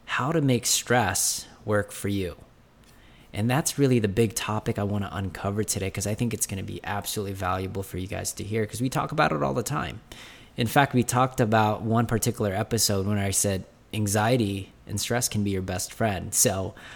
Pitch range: 100-120 Hz